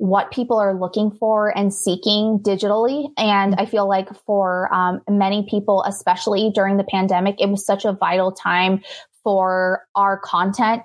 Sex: female